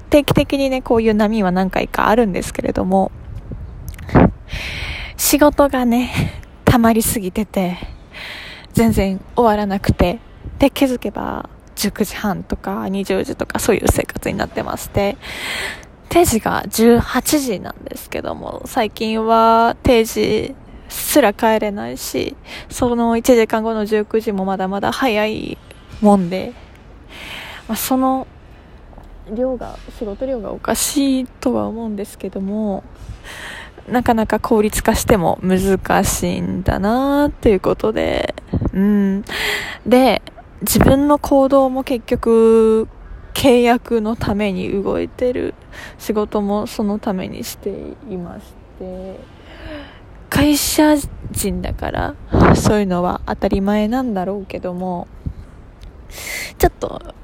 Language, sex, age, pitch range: Japanese, female, 10-29, 195-250 Hz